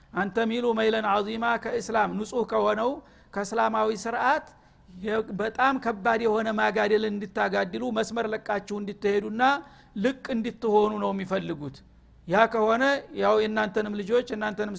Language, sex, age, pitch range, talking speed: Amharic, male, 60-79, 205-245 Hz, 110 wpm